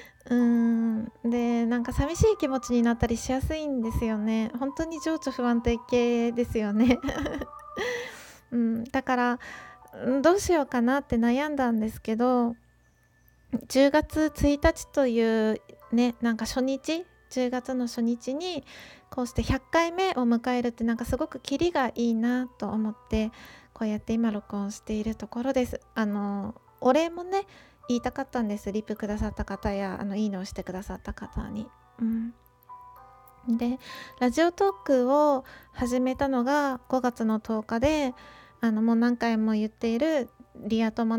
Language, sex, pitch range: Japanese, female, 225-270 Hz